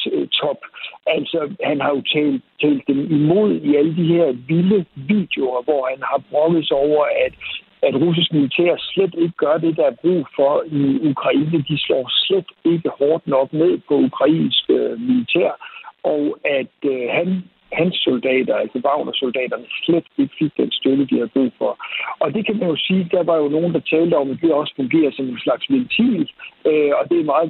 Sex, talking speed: male, 190 wpm